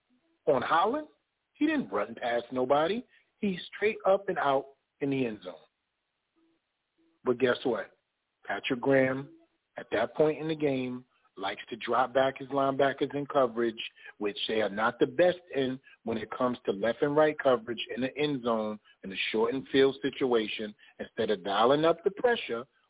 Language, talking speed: English, 175 wpm